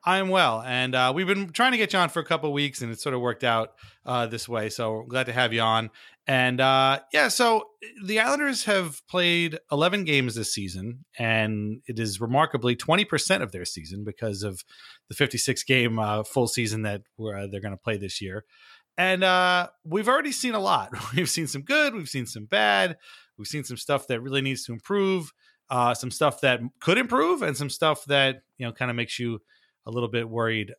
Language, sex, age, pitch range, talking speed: English, male, 30-49, 115-150 Hz, 210 wpm